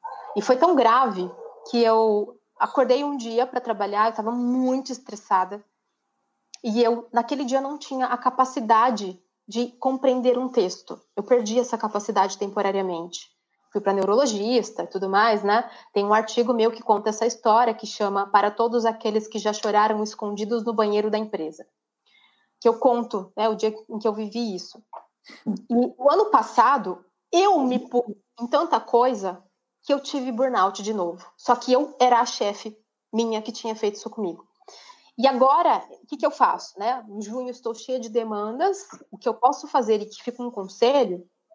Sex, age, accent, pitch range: female, 20-39, Brazilian, 210-260 Hz